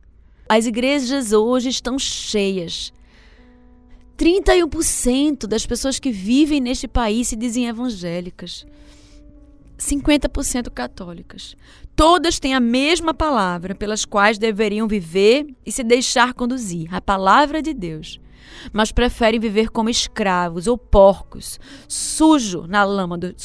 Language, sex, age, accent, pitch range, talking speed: Portuguese, female, 20-39, Brazilian, 205-280 Hz, 105 wpm